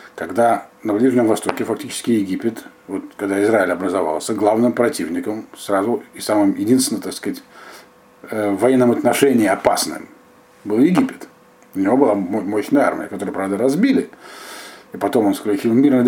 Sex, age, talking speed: male, 50-69, 140 wpm